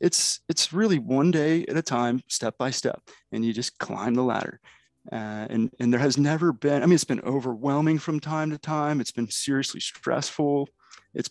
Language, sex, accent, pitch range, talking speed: English, male, American, 120-145 Hz, 200 wpm